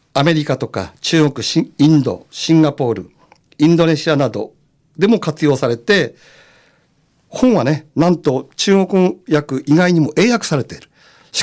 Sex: male